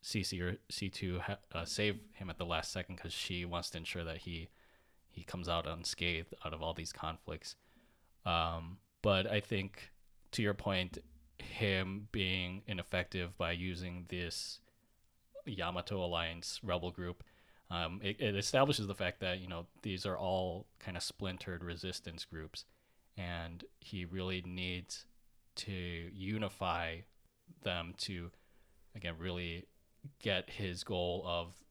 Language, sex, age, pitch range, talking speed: English, male, 20-39, 85-100 Hz, 140 wpm